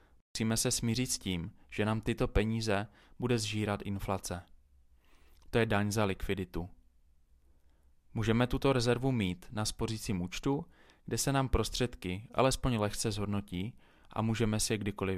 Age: 20-39